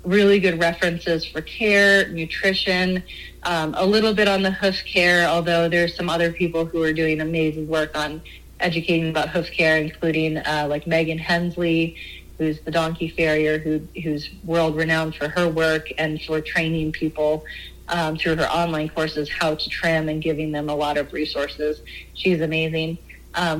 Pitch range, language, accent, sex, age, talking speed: 155-175 Hz, English, American, female, 30-49, 170 wpm